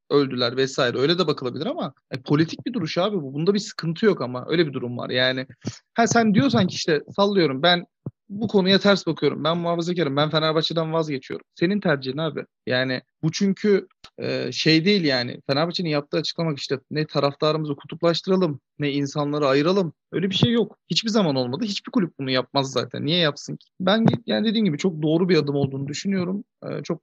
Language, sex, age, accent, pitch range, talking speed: Turkish, male, 40-59, native, 145-195 Hz, 185 wpm